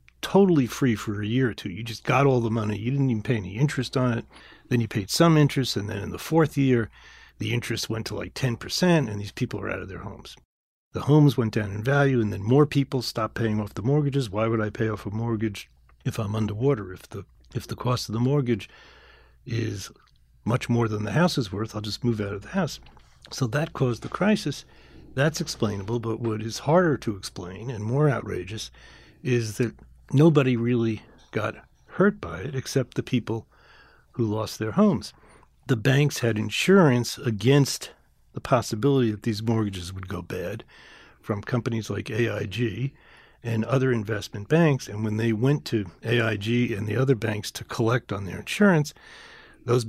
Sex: male